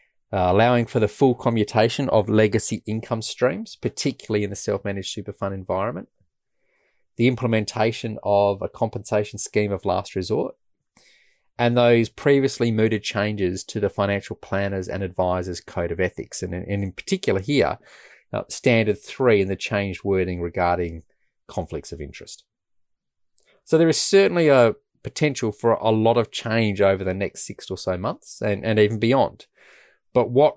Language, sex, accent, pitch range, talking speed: English, male, Australian, 95-115 Hz, 155 wpm